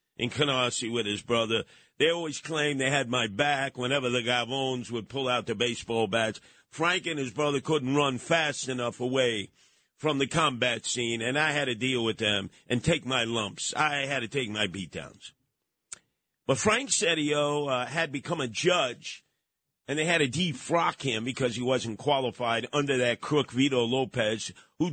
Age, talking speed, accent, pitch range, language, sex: 50-69, 180 wpm, American, 115-145 Hz, English, male